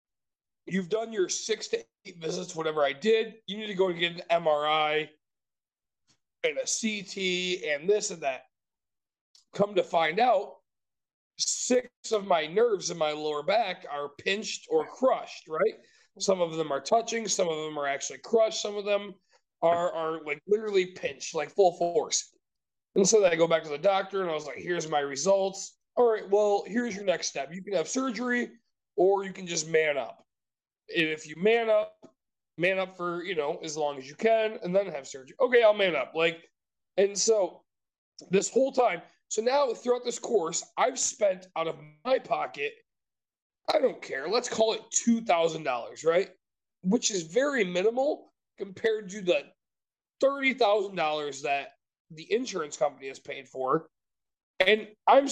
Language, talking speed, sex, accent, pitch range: English, 175 wpm, male, American, 165-235 Hz